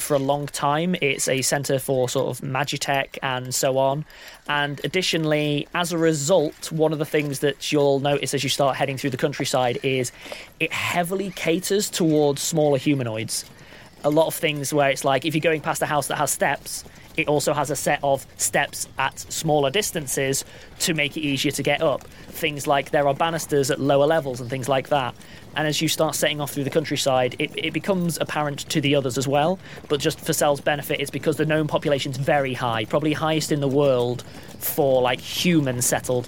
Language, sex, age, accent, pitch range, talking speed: English, male, 20-39, British, 135-155 Hz, 200 wpm